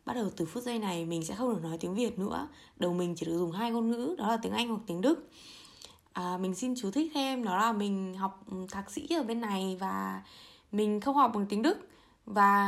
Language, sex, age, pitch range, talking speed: Vietnamese, female, 20-39, 185-240 Hz, 245 wpm